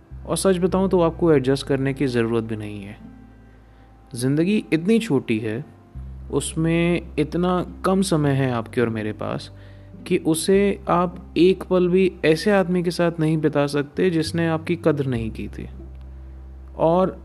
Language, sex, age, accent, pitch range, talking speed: Hindi, male, 30-49, native, 115-175 Hz, 155 wpm